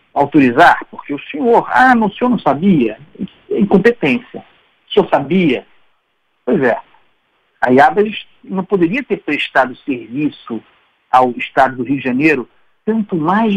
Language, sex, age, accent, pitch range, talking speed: Portuguese, male, 60-79, Brazilian, 125-195 Hz, 135 wpm